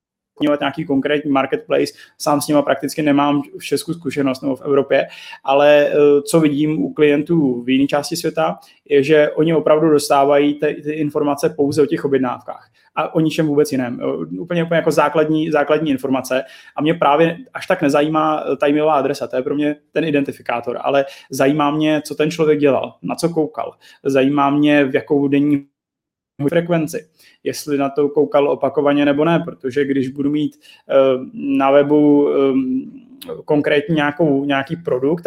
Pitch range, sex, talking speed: 140-155 Hz, male, 155 wpm